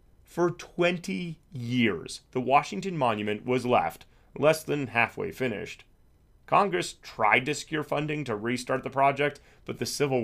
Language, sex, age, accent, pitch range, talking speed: English, male, 30-49, American, 110-165 Hz, 140 wpm